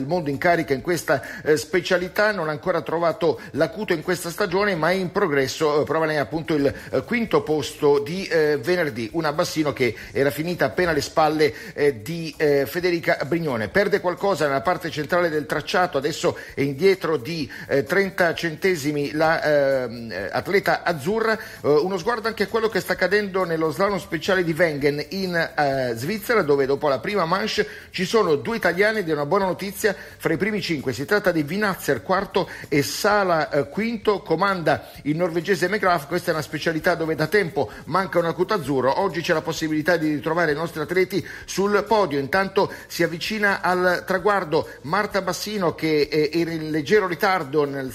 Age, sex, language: 50-69, male, Italian